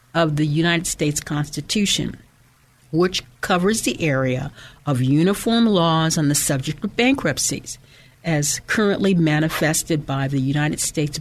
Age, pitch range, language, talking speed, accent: 60-79, 135-180 Hz, English, 130 wpm, American